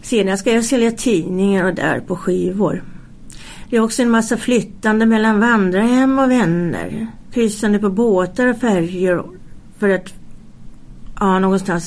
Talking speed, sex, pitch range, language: 130 wpm, female, 185-225 Hz, Swedish